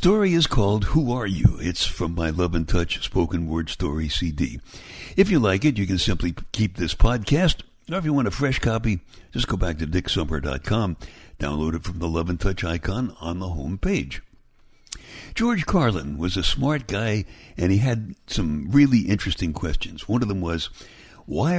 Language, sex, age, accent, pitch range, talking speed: English, male, 60-79, American, 80-115 Hz, 190 wpm